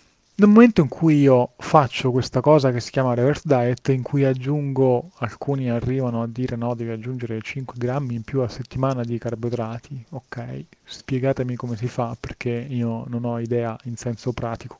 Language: Italian